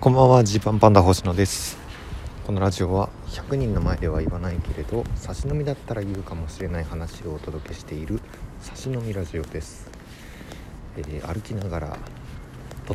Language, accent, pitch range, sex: Japanese, native, 80-105 Hz, male